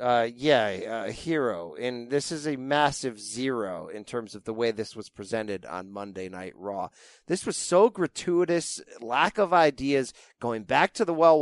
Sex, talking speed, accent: male, 180 wpm, American